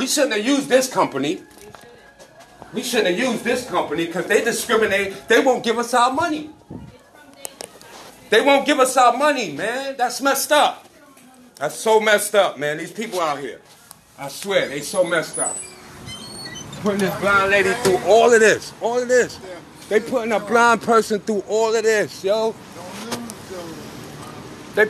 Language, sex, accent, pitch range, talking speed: English, male, American, 160-235 Hz, 165 wpm